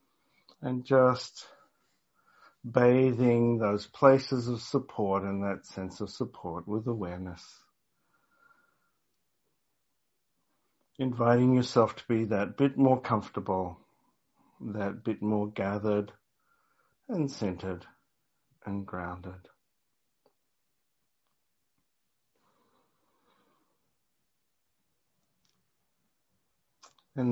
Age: 60-79